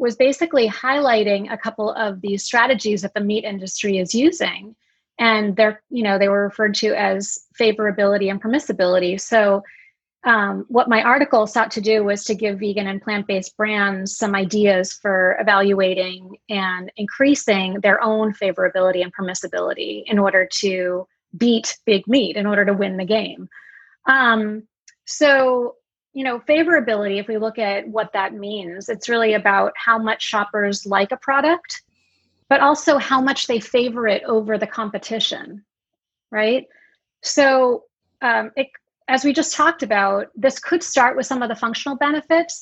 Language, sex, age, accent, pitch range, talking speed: English, female, 30-49, American, 200-245 Hz, 160 wpm